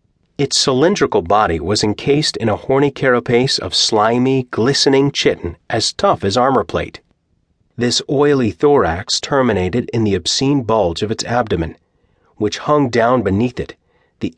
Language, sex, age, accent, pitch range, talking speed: English, male, 40-59, American, 100-130 Hz, 145 wpm